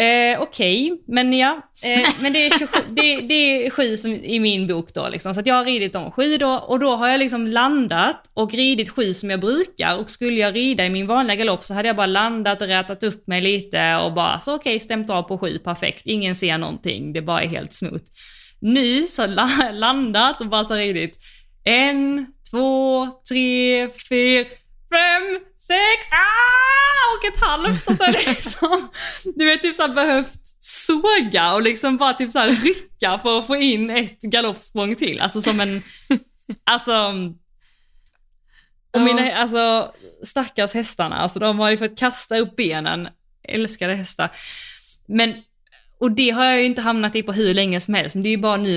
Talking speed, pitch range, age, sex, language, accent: 185 wpm, 195-260 Hz, 20-39, female, Swedish, native